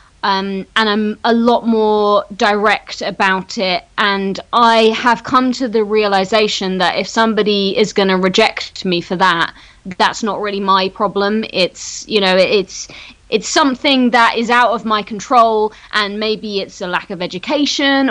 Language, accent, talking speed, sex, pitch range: English, British, 165 wpm, female, 195-245 Hz